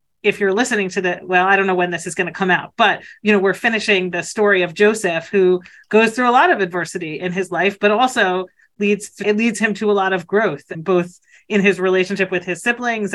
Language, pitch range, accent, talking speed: English, 180-225 Hz, American, 250 wpm